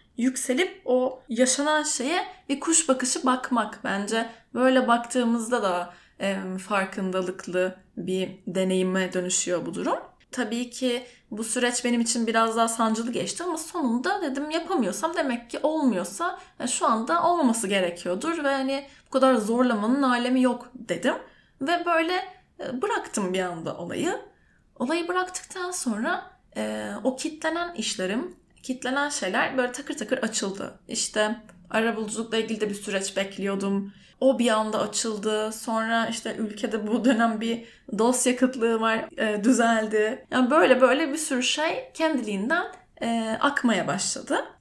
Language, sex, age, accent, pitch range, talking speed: Turkish, female, 10-29, native, 210-275 Hz, 135 wpm